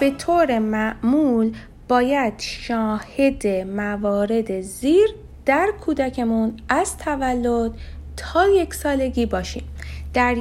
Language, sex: Persian, female